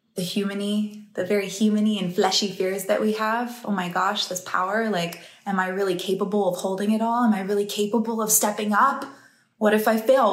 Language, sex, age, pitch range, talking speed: English, female, 20-39, 185-230 Hz, 210 wpm